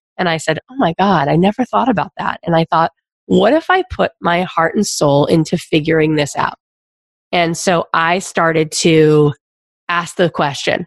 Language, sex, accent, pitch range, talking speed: English, female, American, 165-230 Hz, 190 wpm